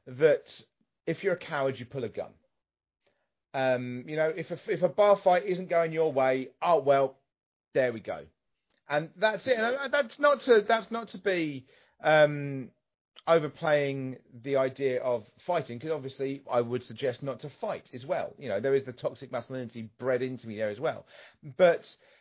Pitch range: 130-175 Hz